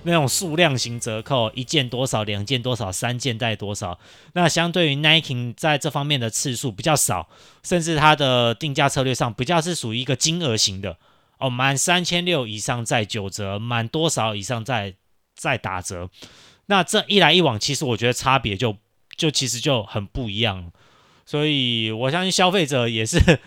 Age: 20-39